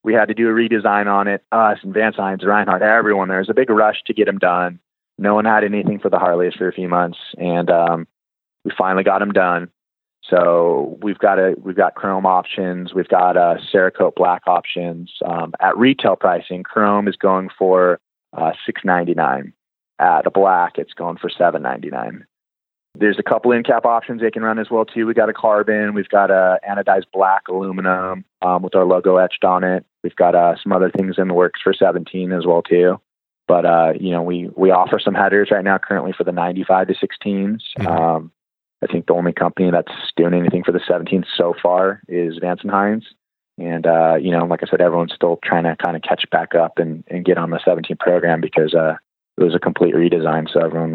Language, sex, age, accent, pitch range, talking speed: English, male, 30-49, American, 85-100 Hz, 220 wpm